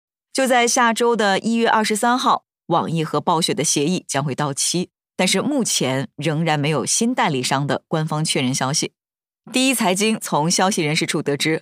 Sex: female